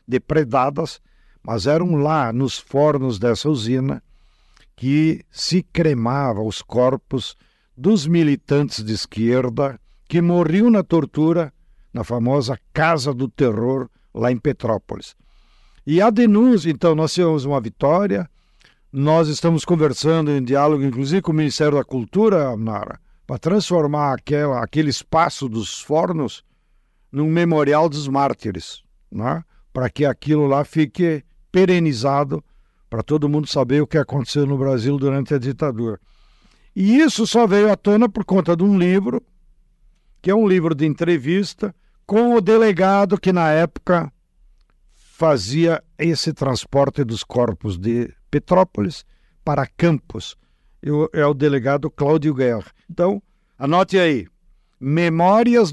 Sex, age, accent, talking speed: male, 60-79, Brazilian, 130 wpm